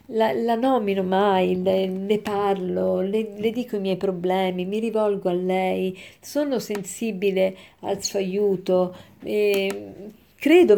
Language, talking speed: Italian, 130 wpm